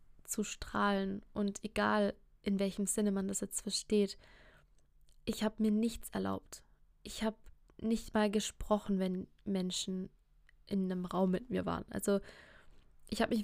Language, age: German, 20-39